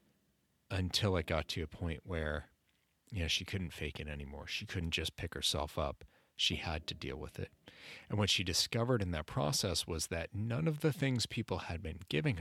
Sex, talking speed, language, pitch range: male, 200 wpm, English, 80-105 Hz